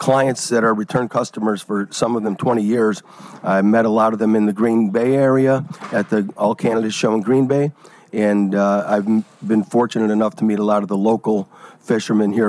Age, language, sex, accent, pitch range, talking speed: 50-69, English, male, American, 105-115 Hz, 220 wpm